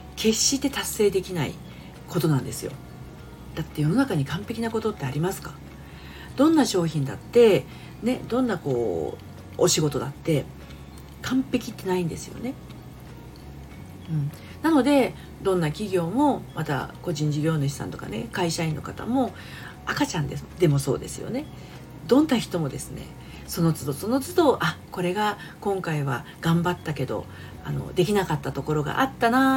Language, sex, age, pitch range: Japanese, female, 40-59, 140-230 Hz